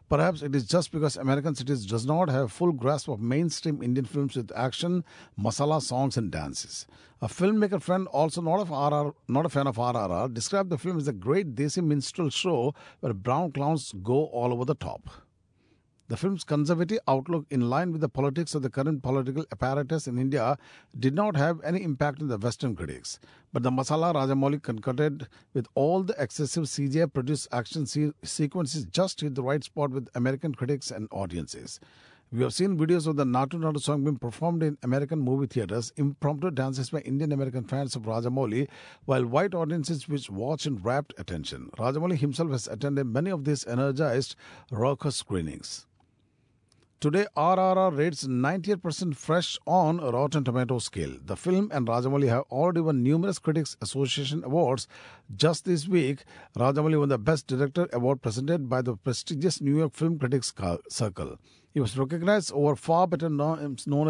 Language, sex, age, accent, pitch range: Japanese, male, 50-69, Indian, 130-160 Hz